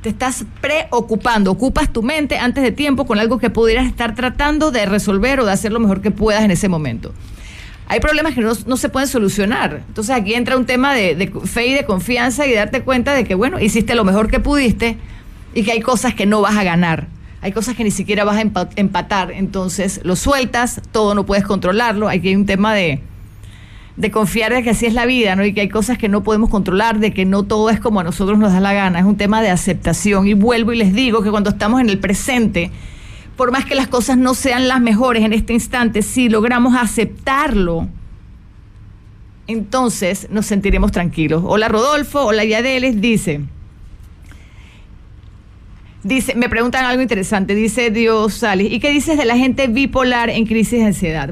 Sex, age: female, 40-59